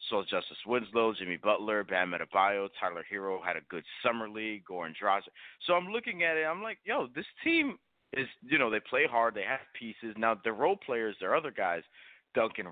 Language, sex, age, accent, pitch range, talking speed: English, male, 30-49, American, 95-120 Hz, 205 wpm